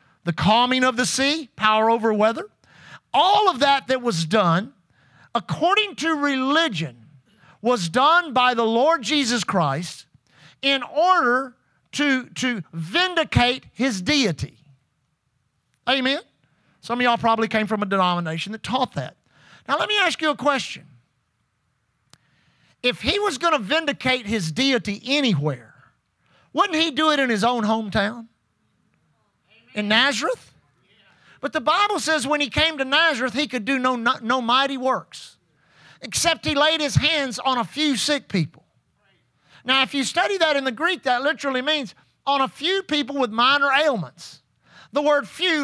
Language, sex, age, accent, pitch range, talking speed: English, male, 50-69, American, 200-295 Hz, 155 wpm